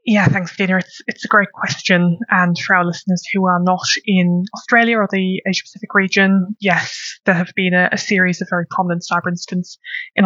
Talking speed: 205 wpm